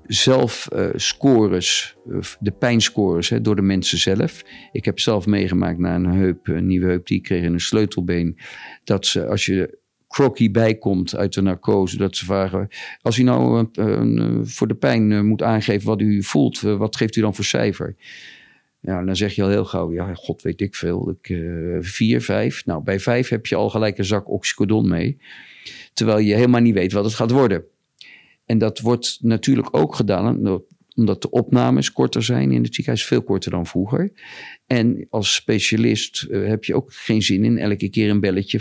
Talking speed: 195 wpm